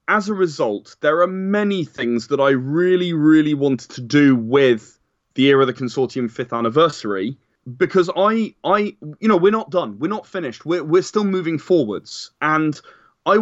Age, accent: 20-39, British